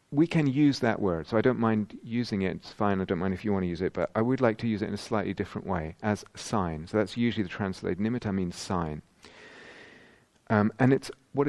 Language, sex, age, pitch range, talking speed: English, male, 40-59, 95-115 Hz, 250 wpm